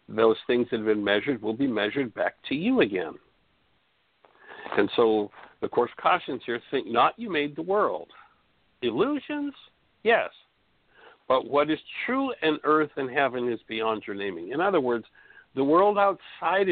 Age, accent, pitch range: 60-79, American, 110-155 Hz